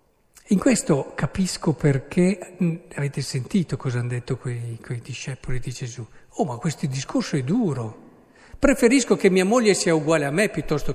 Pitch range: 140-195 Hz